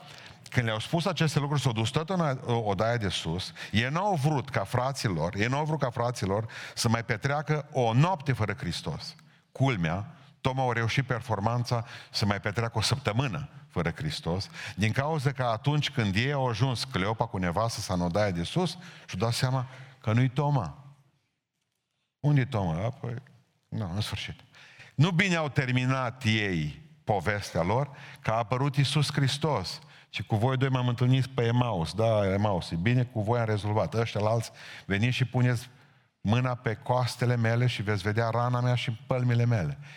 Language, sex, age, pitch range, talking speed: Romanian, male, 50-69, 115-145 Hz, 165 wpm